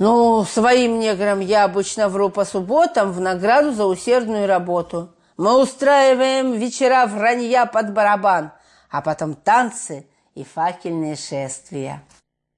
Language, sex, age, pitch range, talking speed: Russian, female, 40-59, 175-255 Hz, 120 wpm